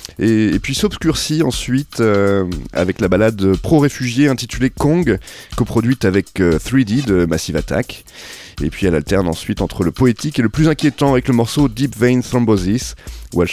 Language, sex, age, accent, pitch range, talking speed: French, male, 30-49, French, 95-125 Hz, 175 wpm